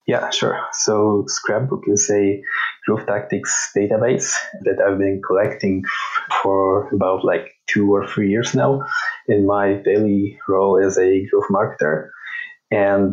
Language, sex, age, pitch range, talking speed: English, male, 20-39, 100-125 Hz, 135 wpm